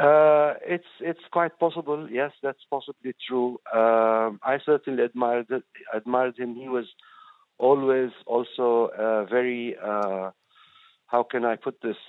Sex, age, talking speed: male, 50-69, 140 wpm